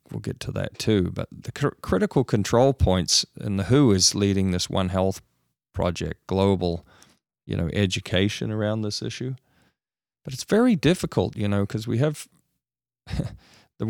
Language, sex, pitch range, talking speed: English, male, 90-105 Hz, 155 wpm